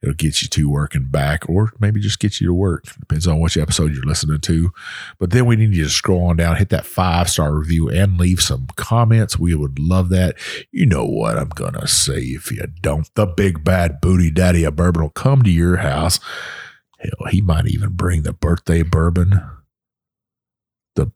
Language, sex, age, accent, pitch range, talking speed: English, male, 50-69, American, 75-95 Hz, 205 wpm